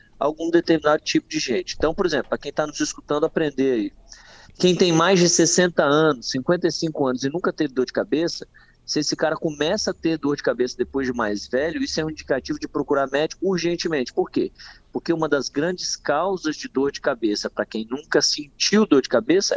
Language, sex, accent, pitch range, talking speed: Portuguese, male, Brazilian, 145-190 Hz, 210 wpm